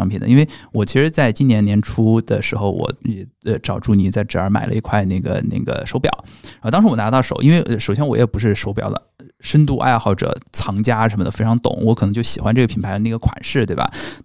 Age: 20-39